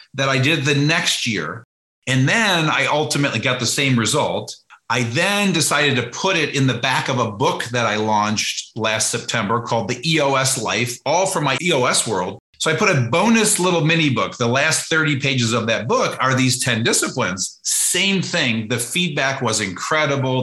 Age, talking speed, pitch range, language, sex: 40-59, 190 wpm, 115-155 Hz, English, male